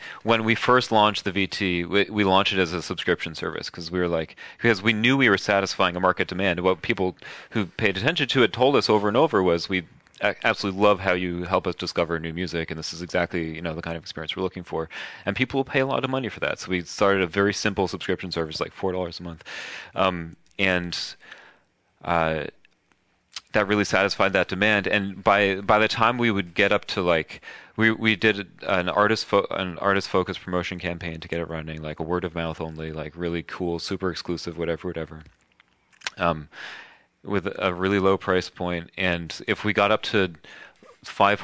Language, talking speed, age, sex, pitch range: English, 210 wpm, 30-49, male, 85-100 Hz